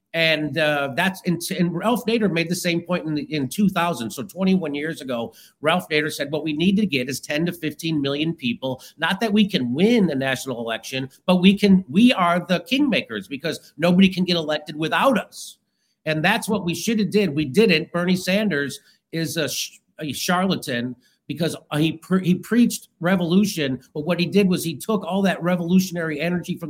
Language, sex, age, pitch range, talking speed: English, male, 50-69, 155-200 Hz, 195 wpm